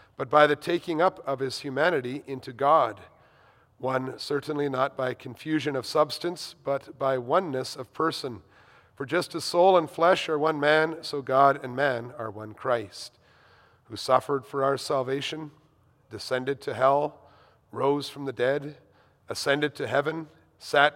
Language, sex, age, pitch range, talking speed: English, male, 40-59, 120-150 Hz, 155 wpm